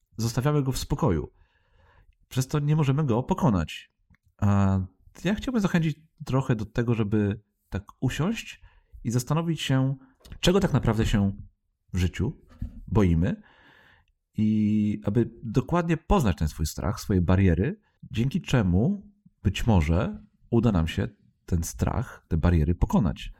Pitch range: 90-125 Hz